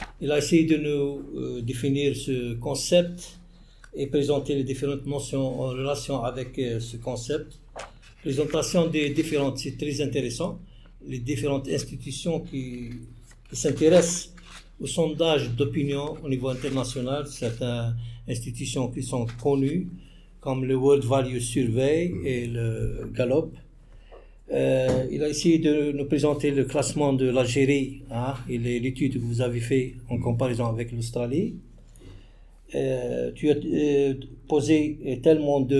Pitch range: 125-150 Hz